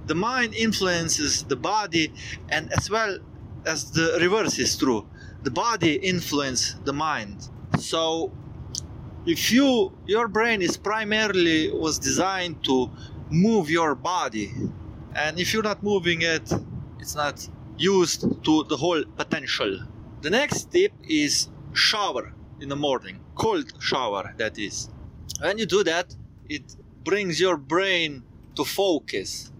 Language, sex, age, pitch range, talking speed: English, male, 30-49, 135-205 Hz, 135 wpm